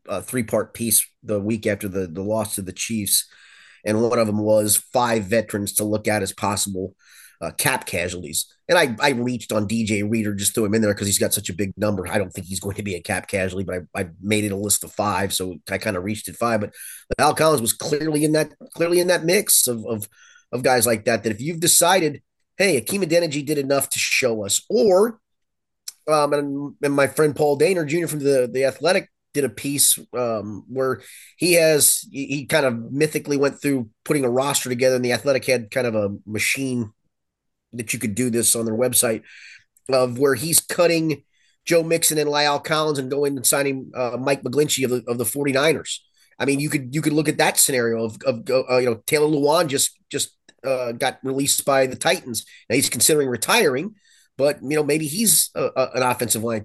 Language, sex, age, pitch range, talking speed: English, male, 30-49, 110-145 Hz, 220 wpm